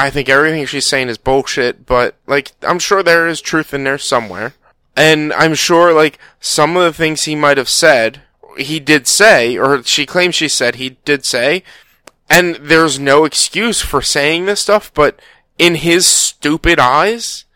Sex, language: male, English